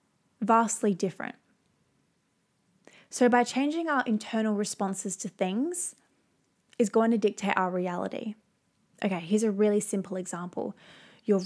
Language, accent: English, Australian